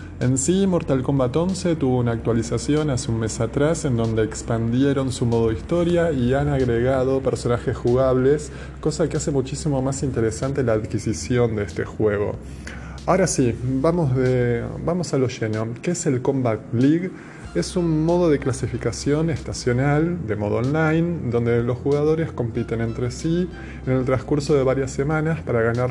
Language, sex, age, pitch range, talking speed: Spanish, male, 20-39, 115-145 Hz, 160 wpm